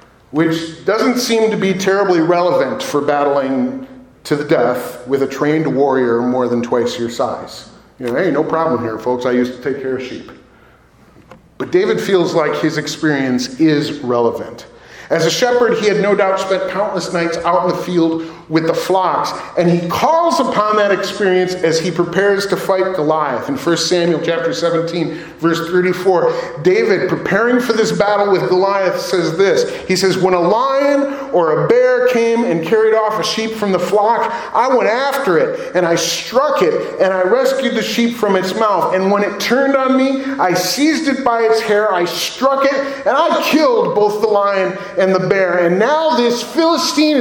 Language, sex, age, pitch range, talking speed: English, male, 40-59, 165-245 Hz, 190 wpm